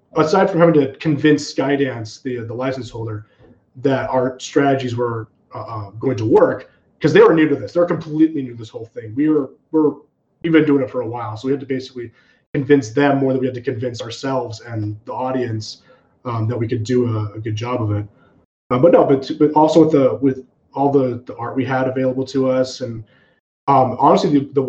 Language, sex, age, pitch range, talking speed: English, male, 20-39, 115-140 Hz, 230 wpm